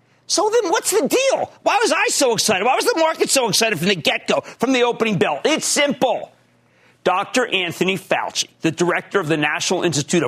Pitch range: 160-245 Hz